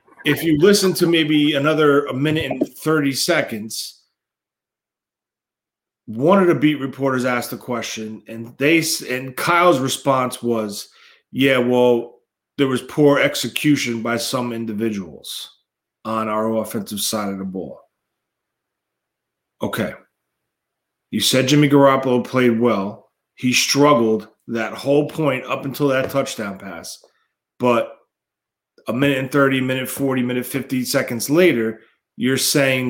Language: English